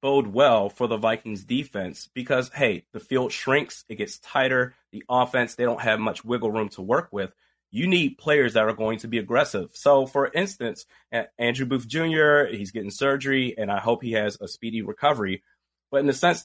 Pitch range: 115-140 Hz